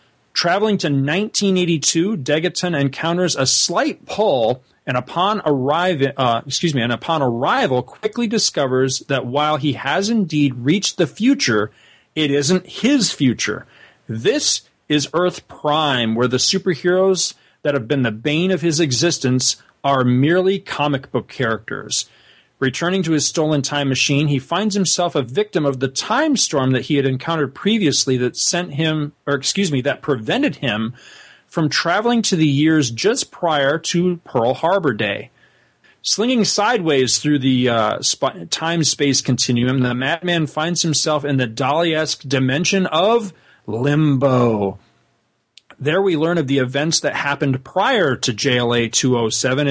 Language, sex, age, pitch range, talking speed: English, male, 40-59, 130-175 Hz, 145 wpm